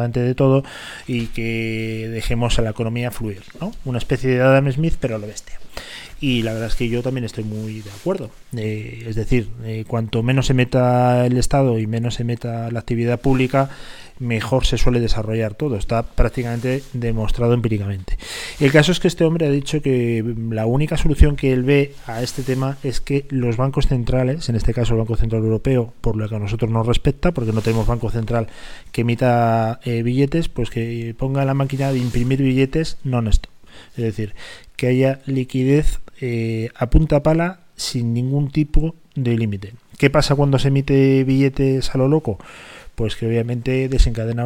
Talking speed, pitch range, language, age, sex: 185 wpm, 115-135 Hz, Spanish, 20-39, male